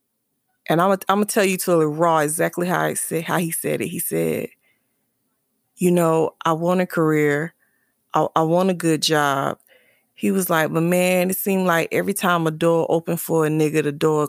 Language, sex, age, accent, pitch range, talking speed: English, female, 20-39, American, 155-200 Hz, 200 wpm